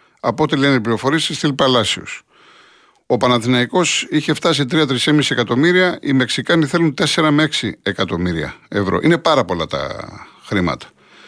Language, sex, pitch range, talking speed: Greek, male, 105-155 Hz, 130 wpm